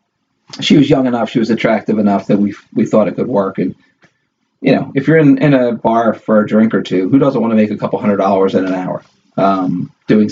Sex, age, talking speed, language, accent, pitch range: male, 40-59, 250 wpm, English, American, 110-165 Hz